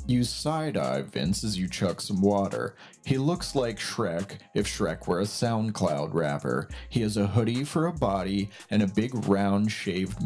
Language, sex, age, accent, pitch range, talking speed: English, male, 30-49, American, 100-130 Hz, 180 wpm